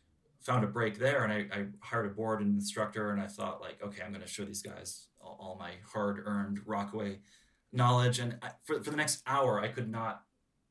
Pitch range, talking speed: 100-120 Hz, 225 wpm